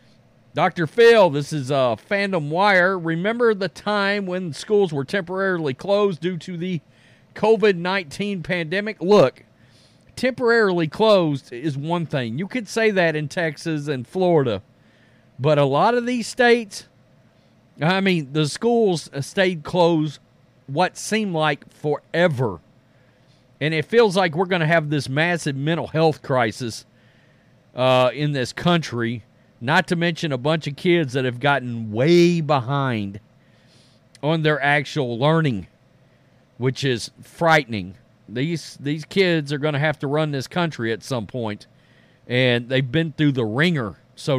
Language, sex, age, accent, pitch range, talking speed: English, male, 40-59, American, 130-180 Hz, 145 wpm